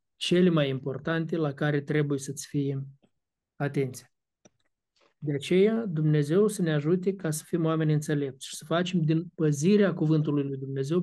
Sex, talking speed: male, 150 wpm